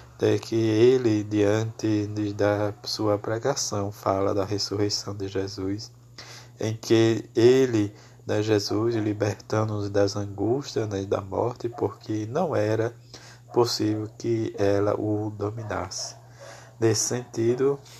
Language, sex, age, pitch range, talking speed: Portuguese, male, 20-39, 105-120 Hz, 105 wpm